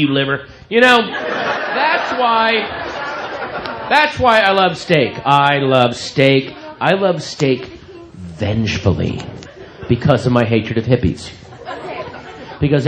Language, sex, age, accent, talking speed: English, male, 40-59, American, 115 wpm